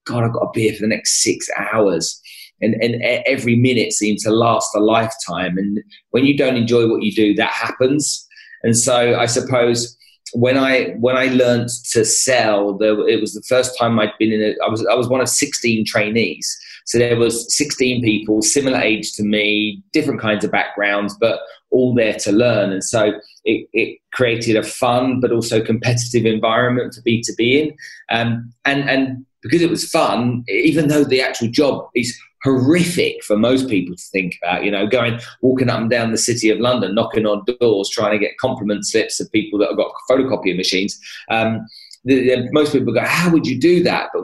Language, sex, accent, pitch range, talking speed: English, male, British, 110-130 Hz, 205 wpm